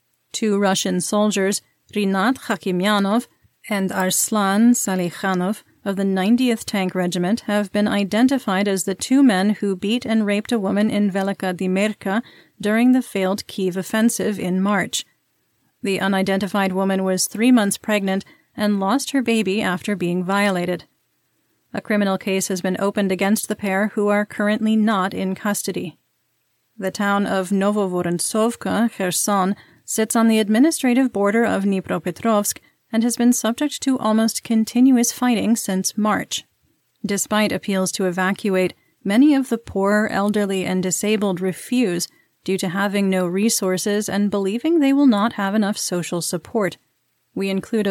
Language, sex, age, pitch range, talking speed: English, female, 30-49, 190-220 Hz, 145 wpm